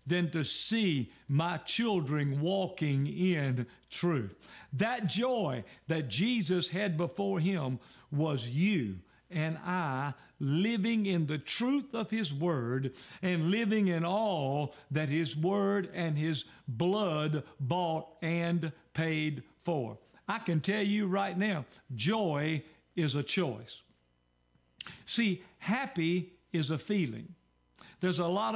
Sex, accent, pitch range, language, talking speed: male, American, 145-185 Hz, English, 120 wpm